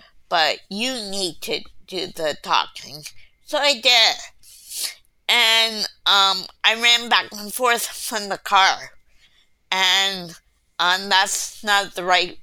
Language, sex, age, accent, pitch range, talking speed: English, female, 20-39, American, 160-195 Hz, 125 wpm